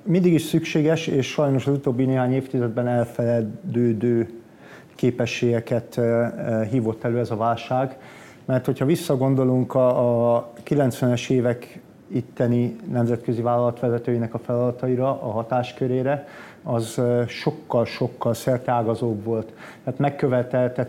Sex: male